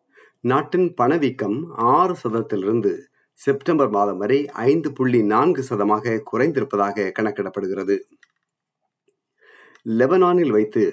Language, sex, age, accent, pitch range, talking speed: Tamil, male, 50-69, native, 110-155 Hz, 80 wpm